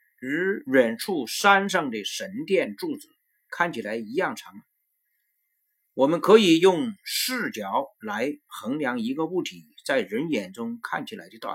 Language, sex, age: Chinese, male, 50-69